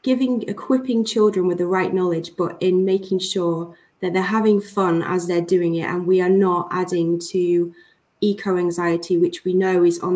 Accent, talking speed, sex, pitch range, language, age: British, 185 wpm, female, 170-190 Hz, English, 20-39